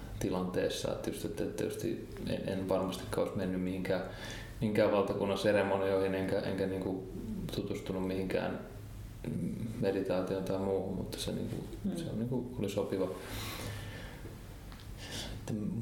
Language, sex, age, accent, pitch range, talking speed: Finnish, male, 20-39, native, 95-110 Hz, 100 wpm